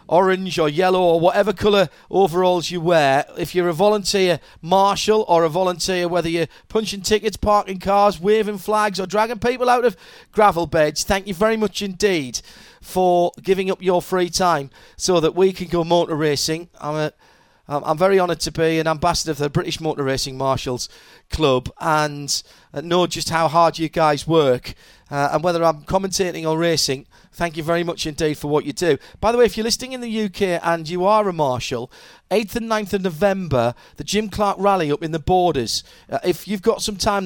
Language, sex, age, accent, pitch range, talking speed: English, male, 40-59, British, 155-195 Hz, 200 wpm